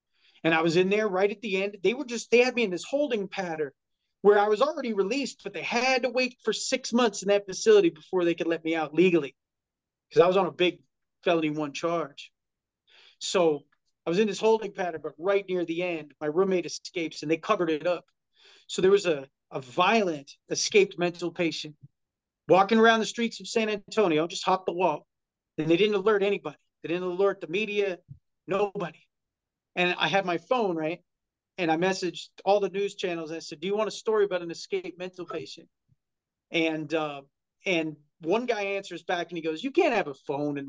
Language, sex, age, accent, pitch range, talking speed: English, male, 30-49, American, 160-205 Hz, 210 wpm